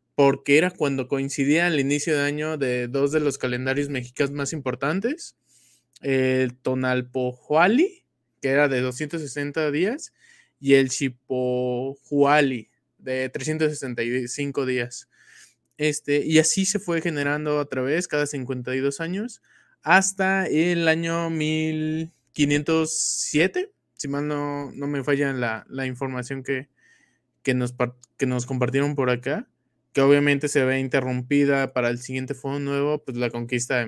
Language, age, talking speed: Spanish, 20-39, 135 wpm